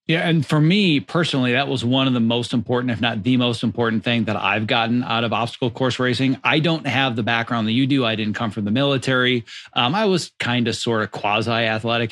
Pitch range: 115-140 Hz